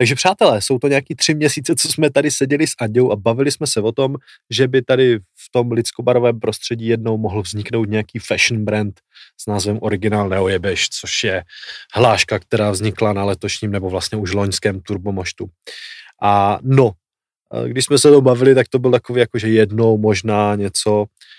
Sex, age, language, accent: male, 20-39, Czech, native